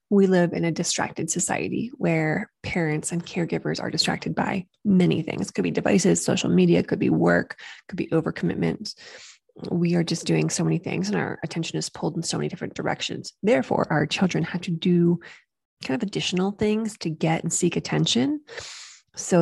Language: English